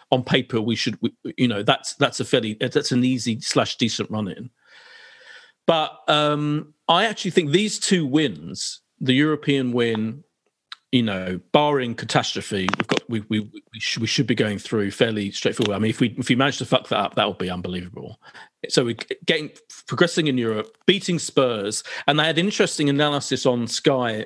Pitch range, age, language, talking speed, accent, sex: 110-160 Hz, 40-59, English, 190 wpm, British, male